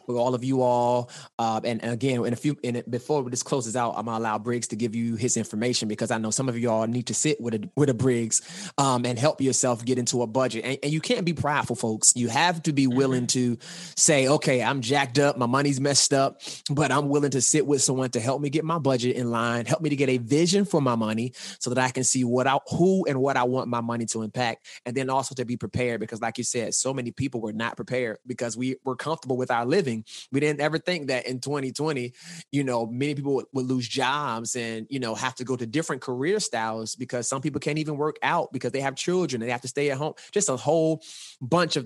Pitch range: 115-140 Hz